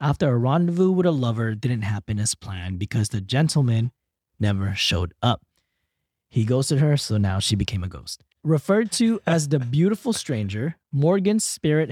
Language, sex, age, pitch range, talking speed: English, male, 20-39, 110-155 Hz, 165 wpm